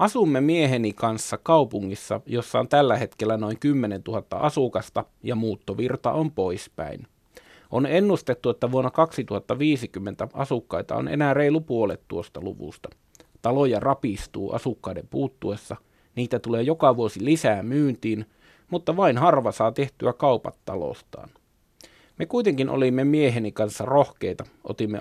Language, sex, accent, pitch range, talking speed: Finnish, male, native, 110-140 Hz, 125 wpm